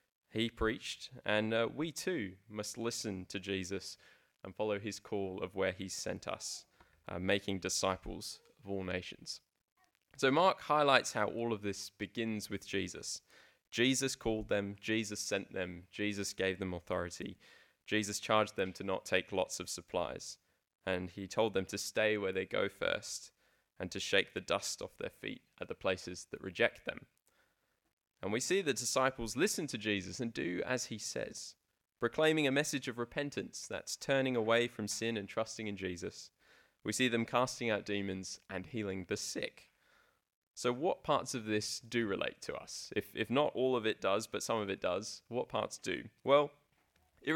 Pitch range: 100-125 Hz